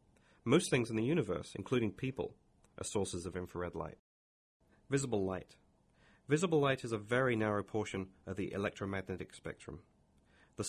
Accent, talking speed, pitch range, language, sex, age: British, 145 wpm, 90-115 Hz, English, male, 30-49